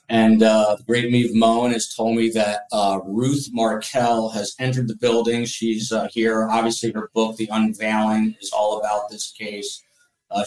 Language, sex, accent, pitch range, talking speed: English, male, American, 105-120 Hz, 185 wpm